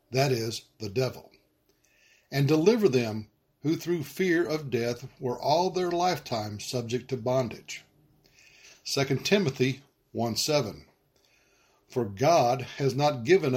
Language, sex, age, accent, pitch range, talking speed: English, male, 60-79, American, 115-145 Hz, 120 wpm